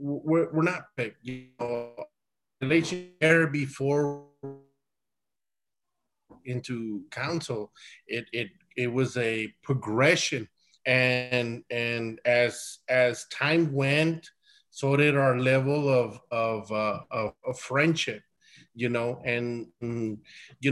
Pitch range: 120-150 Hz